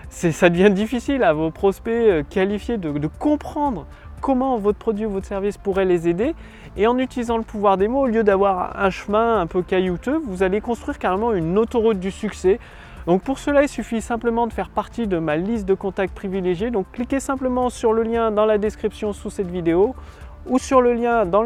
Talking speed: 205 wpm